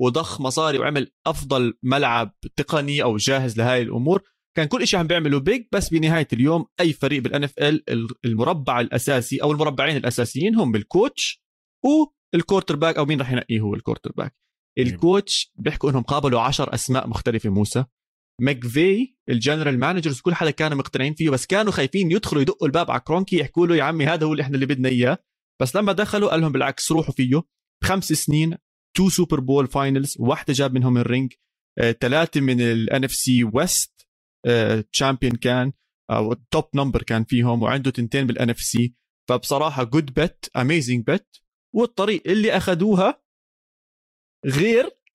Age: 30-49